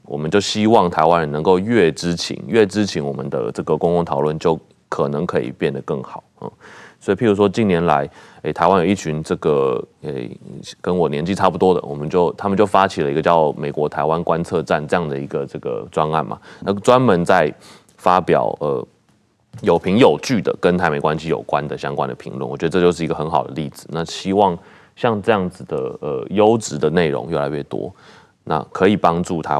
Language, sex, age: Chinese, male, 30-49